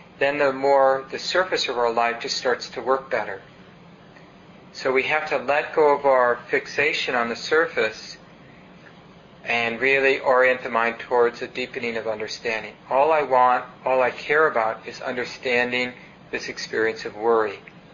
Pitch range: 125-150 Hz